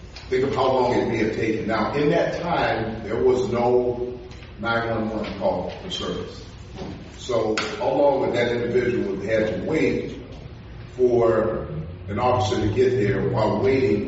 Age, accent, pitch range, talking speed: 40-59, American, 105-125 Hz, 155 wpm